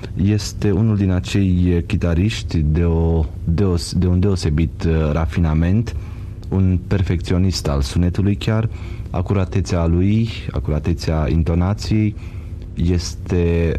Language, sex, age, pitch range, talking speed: Romanian, male, 30-49, 80-100 Hz, 100 wpm